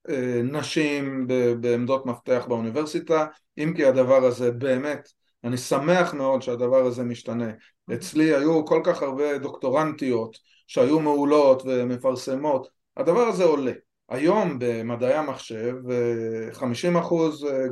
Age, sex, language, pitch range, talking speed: 30-49, male, Hebrew, 125-160 Hz, 105 wpm